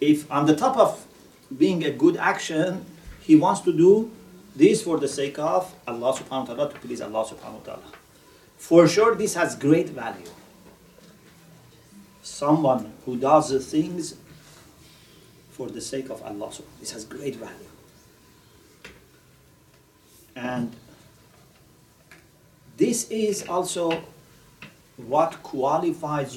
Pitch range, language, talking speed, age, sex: 135-200 Hz, English, 130 wpm, 40-59, male